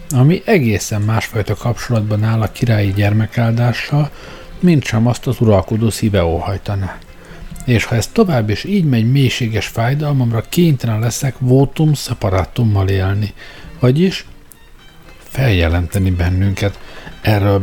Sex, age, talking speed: male, 60-79, 110 wpm